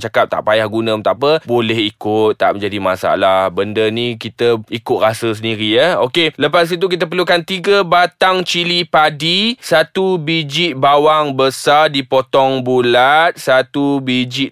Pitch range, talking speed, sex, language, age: 125-160 Hz, 155 wpm, male, Malay, 20-39